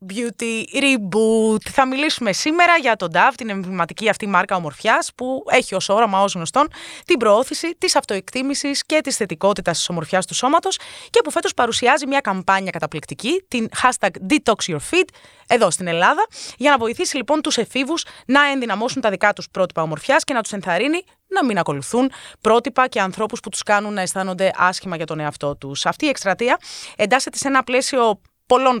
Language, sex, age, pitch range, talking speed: Greek, female, 20-39, 185-280 Hz, 175 wpm